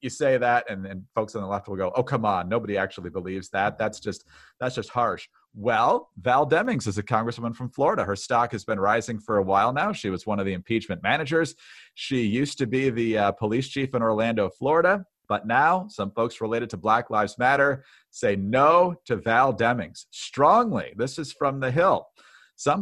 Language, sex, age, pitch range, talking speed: English, male, 40-59, 110-135 Hz, 210 wpm